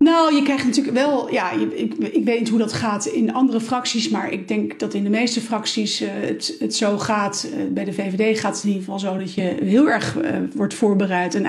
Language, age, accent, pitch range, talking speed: Dutch, 40-59, Dutch, 205-240 Hz, 220 wpm